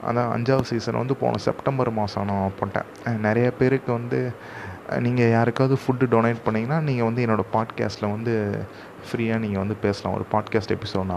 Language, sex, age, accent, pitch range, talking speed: Tamil, male, 30-49, native, 105-125 Hz, 150 wpm